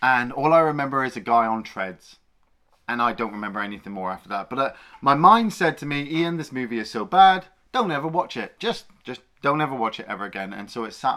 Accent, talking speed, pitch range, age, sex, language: British, 245 wpm, 115-180 Hz, 30-49, male, English